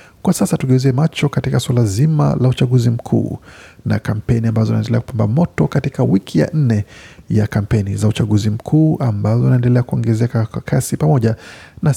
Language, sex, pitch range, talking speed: Swahili, male, 110-135 Hz, 155 wpm